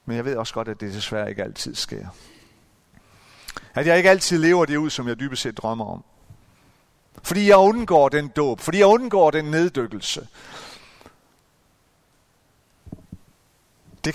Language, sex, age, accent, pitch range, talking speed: Danish, male, 40-59, native, 110-165 Hz, 150 wpm